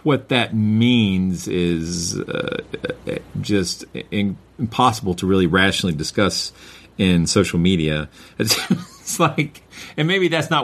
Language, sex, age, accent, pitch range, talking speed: English, male, 40-59, American, 90-115 Hz, 125 wpm